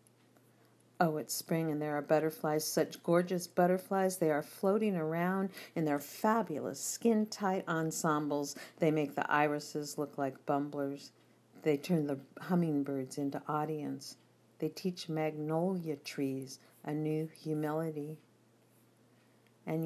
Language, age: English, 50-69